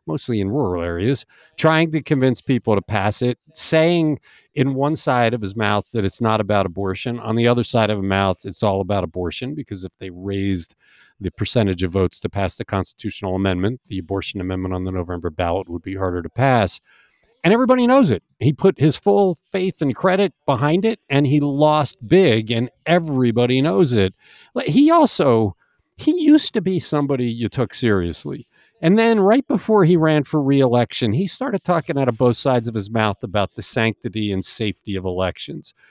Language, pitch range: English, 105-165 Hz